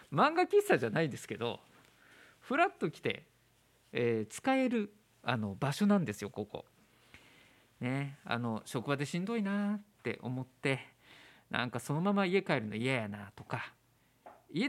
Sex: male